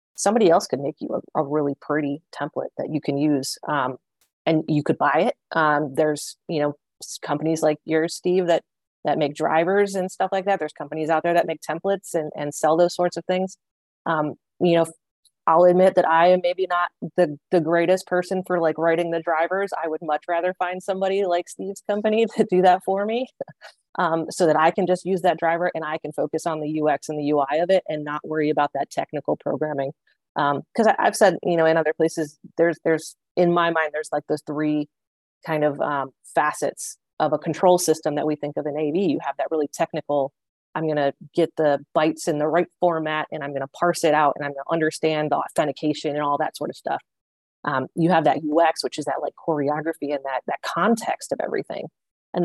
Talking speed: 225 wpm